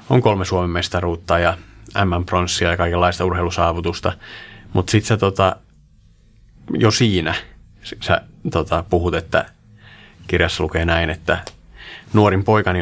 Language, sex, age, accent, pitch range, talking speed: Finnish, male, 30-49, native, 90-110 Hz, 115 wpm